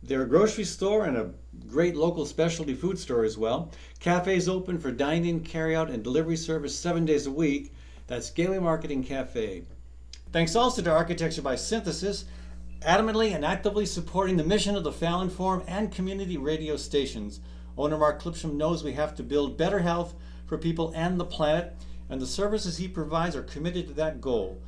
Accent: American